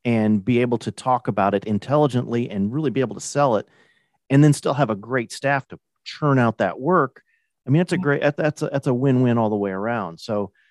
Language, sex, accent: English, male, American